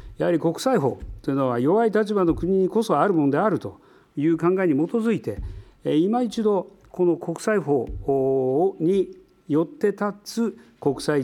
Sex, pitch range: male, 125-185 Hz